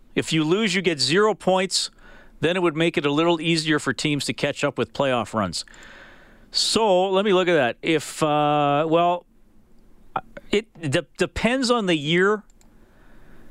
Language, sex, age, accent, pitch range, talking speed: English, male, 40-59, American, 115-160 Hz, 170 wpm